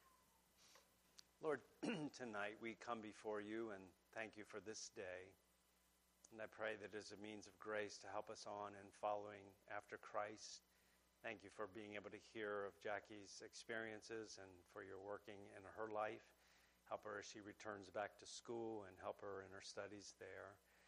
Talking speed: 175 wpm